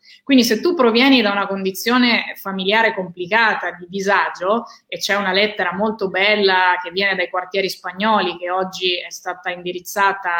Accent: native